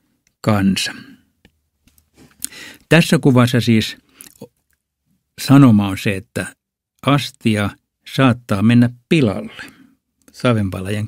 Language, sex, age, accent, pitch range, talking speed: Finnish, male, 60-79, native, 100-120 Hz, 70 wpm